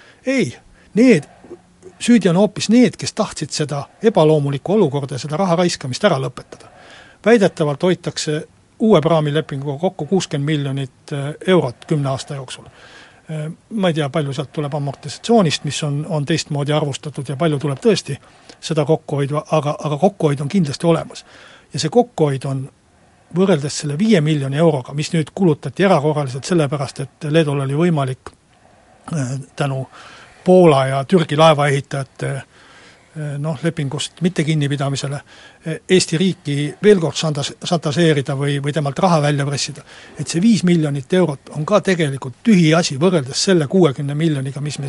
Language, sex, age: Finnish, male, 60-79